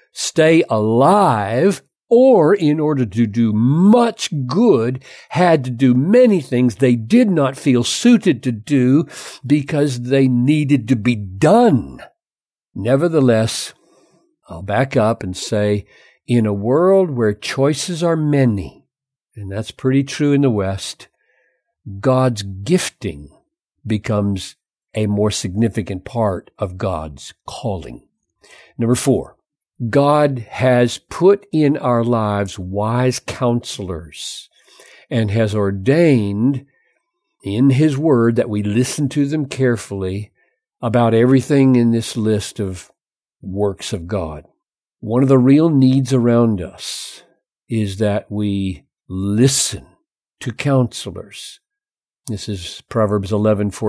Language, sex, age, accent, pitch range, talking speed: English, male, 60-79, American, 105-140 Hz, 115 wpm